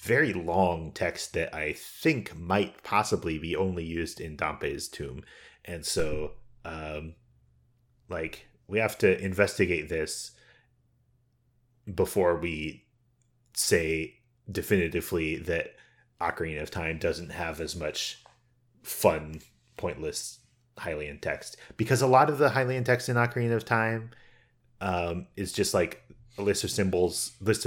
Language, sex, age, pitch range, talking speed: English, male, 30-49, 90-120 Hz, 130 wpm